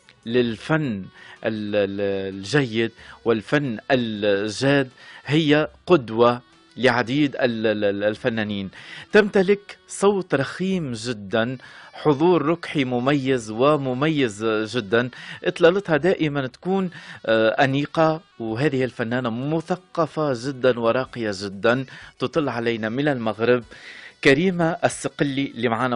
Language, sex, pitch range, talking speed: Arabic, male, 115-150 Hz, 80 wpm